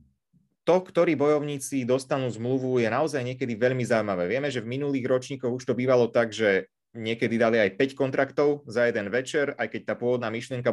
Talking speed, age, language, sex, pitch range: 185 wpm, 30-49, Slovak, male, 120-140 Hz